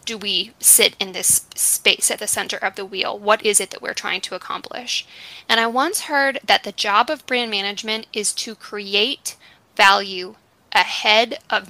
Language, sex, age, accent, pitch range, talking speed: English, female, 10-29, American, 205-250 Hz, 185 wpm